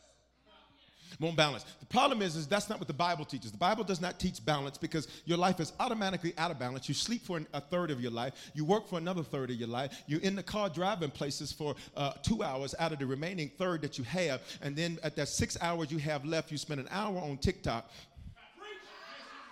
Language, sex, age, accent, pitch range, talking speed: English, male, 40-59, American, 150-190 Hz, 230 wpm